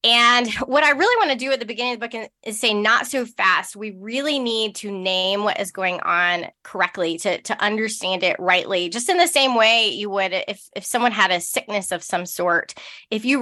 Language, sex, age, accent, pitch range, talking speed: English, female, 20-39, American, 195-245 Hz, 230 wpm